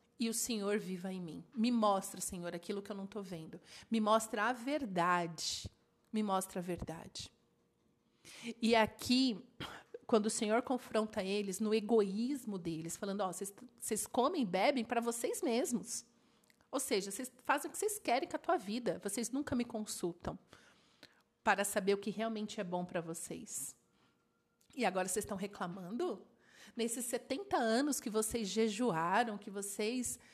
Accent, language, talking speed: Brazilian, Portuguese, 160 wpm